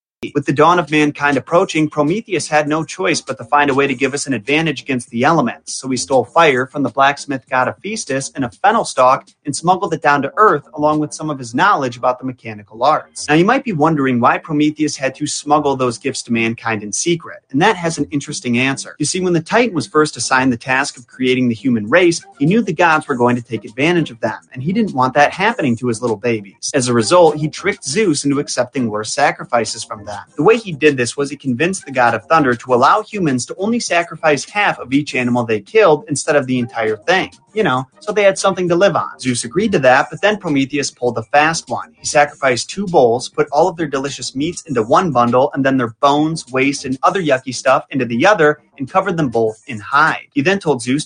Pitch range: 125-160 Hz